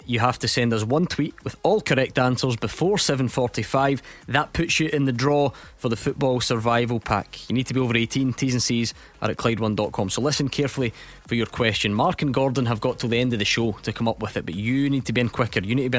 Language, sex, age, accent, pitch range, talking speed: English, male, 20-39, British, 110-140 Hz, 260 wpm